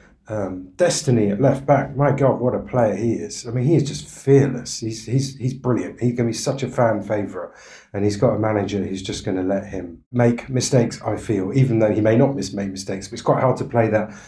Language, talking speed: English, 245 wpm